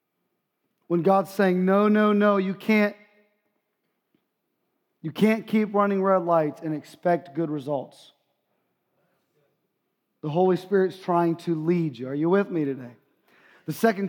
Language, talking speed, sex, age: English, 130 wpm, male, 30-49